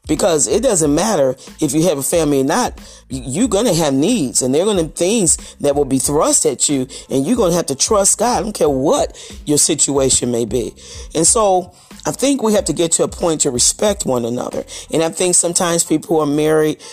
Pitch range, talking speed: 130-185 Hz, 240 wpm